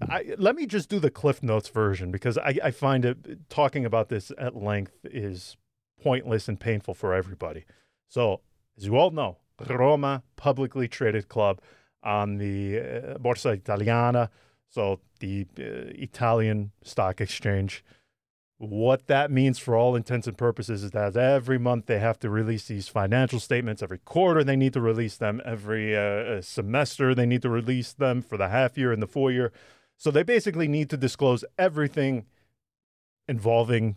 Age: 30-49